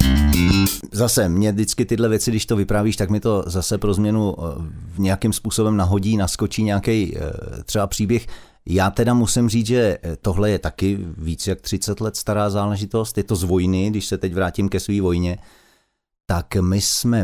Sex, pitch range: male, 90-110 Hz